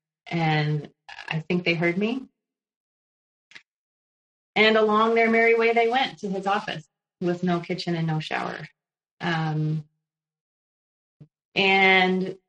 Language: English